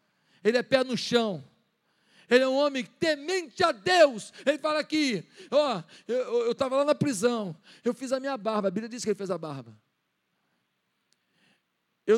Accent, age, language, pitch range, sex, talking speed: Brazilian, 50-69, Portuguese, 195-240 Hz, male, 175 wpm